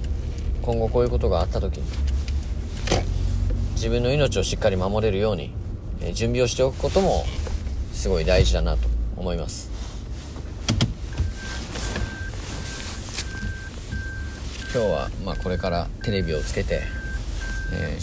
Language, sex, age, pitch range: Japanese, male, 40-59, 85-110 Hz